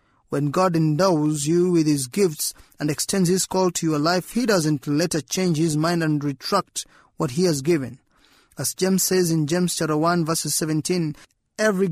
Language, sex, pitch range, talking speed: English, male, 150-185 Hz, 180 wpm